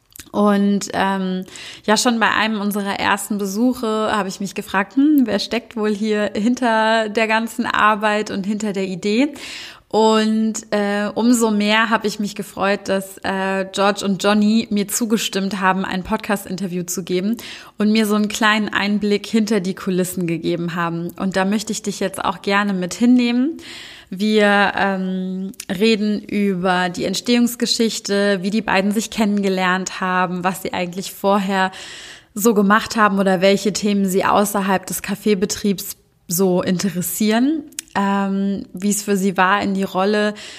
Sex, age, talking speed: female, 20-39, 155 wpm